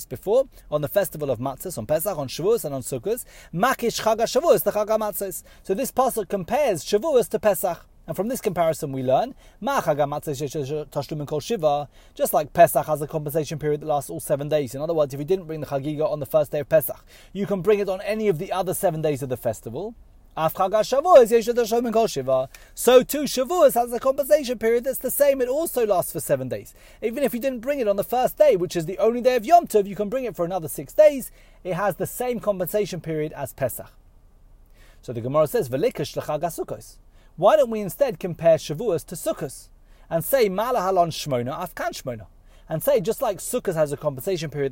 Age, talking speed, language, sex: 30-49, 190 wpm, English, male